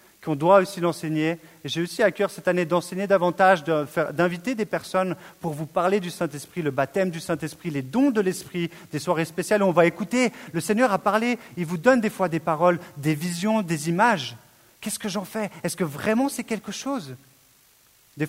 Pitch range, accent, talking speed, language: 150-200 Hz, French, 205 wpm, French